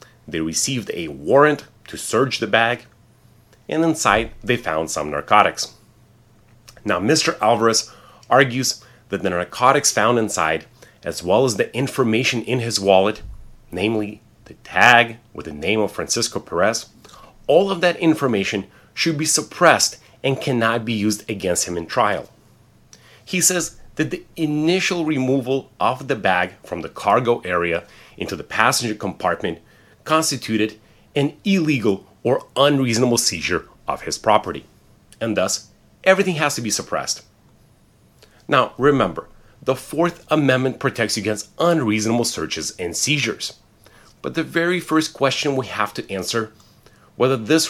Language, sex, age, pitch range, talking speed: English, male, 30-49, 110-145 Hz, 140 wpm